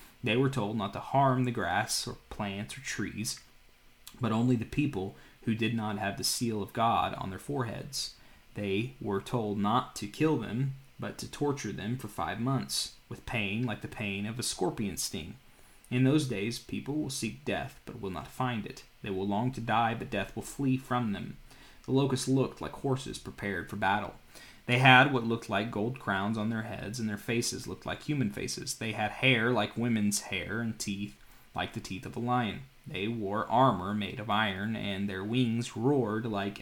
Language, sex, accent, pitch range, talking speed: English, male, American, 105-125 Hz, 200 wpm